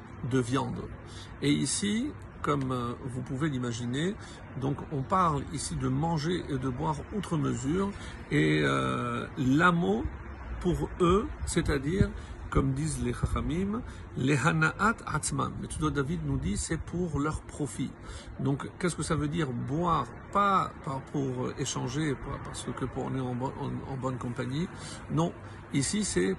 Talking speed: 150 wpm